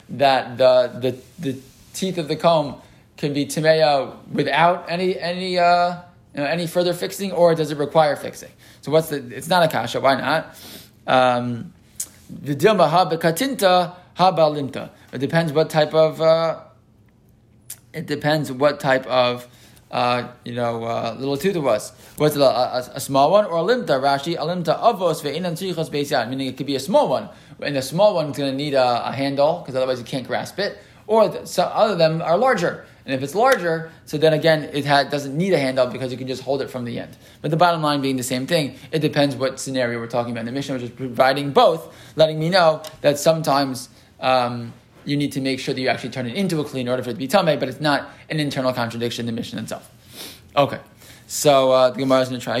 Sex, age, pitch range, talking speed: male, 20-39, 130-165 Hz, 210 wpm